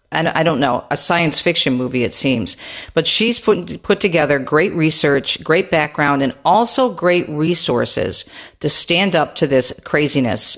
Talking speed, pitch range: 160 wpm, 140-180 Hz